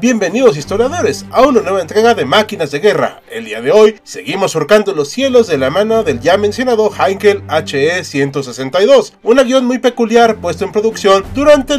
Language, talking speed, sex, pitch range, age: Spanish, 180 wpm, male, 155-230 Hz, 30-49